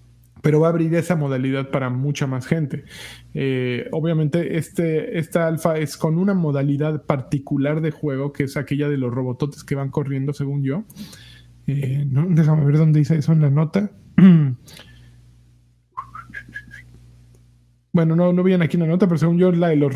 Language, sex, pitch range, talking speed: Spanish, male, 135-170 Hz, 175 wpm